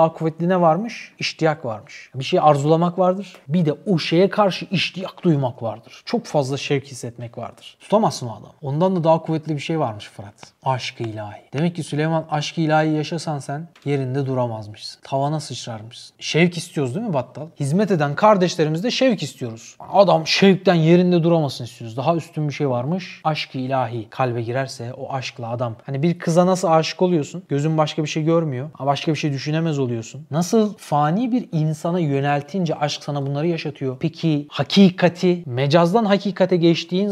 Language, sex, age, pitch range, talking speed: Turkish, male, 30-49, 135-180 Hz, 170 wpm